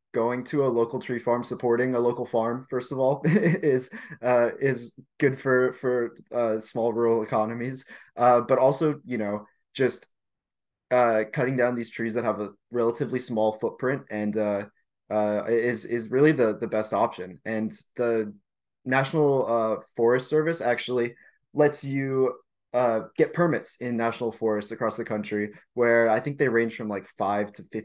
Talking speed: 165 wpm